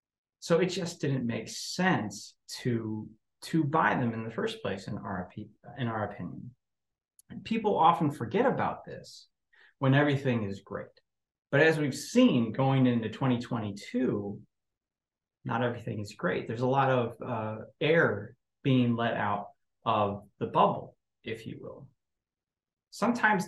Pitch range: 115-145 Hz